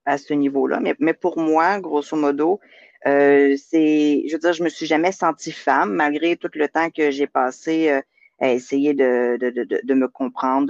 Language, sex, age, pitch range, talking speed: French, female, 40-59, 125-155 Hz, 200 wpm